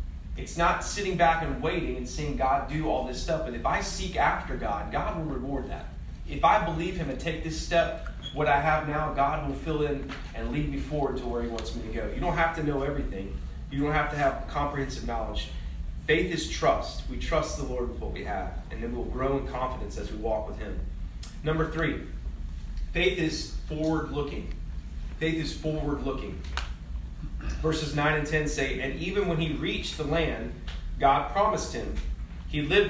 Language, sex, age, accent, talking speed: English, male, 30-49, American, 200 wpm